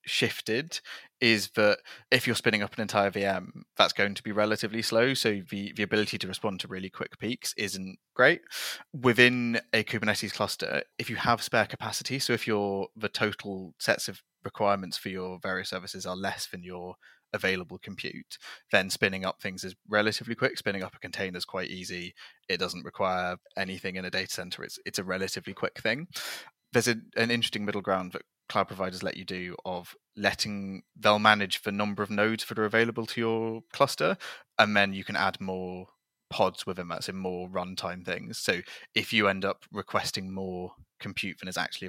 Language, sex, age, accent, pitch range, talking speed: English, male, 20-39, British, 95-110 Hz, 190 wpm